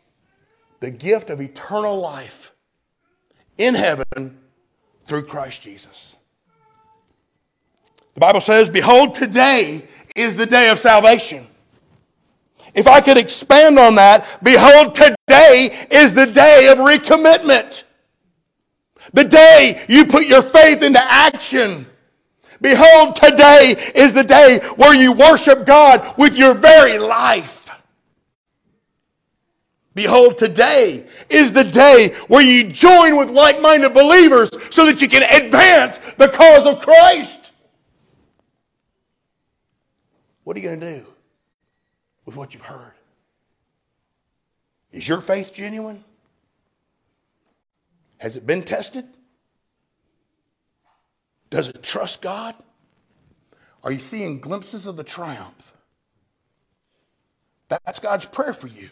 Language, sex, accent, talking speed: English, male, American, 110 wpm